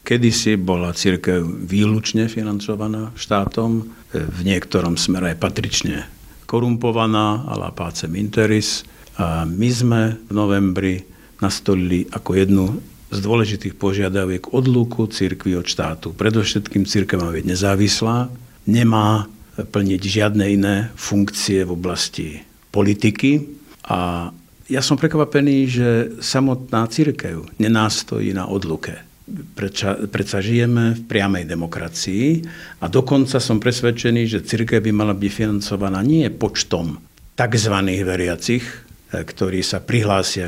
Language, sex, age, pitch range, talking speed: Slovak, male, 50-69, 95-115 Hz, 110 wpm